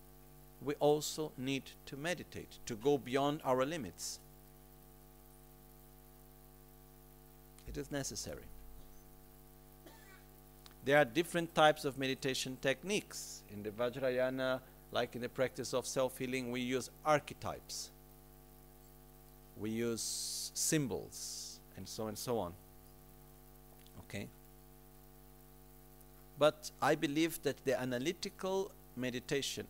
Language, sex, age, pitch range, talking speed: Italian, male, 50-69, 85-130 Hz, 95 wpm